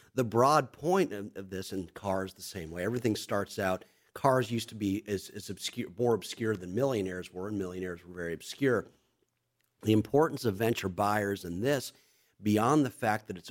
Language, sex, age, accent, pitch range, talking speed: English, male, 50-69, American, 95-115 Hz, 190 wpm